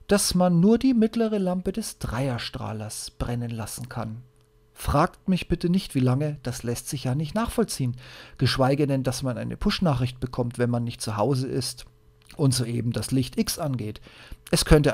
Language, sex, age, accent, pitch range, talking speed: German, male, 40-59, German, 120-160 Hz, 175 wpm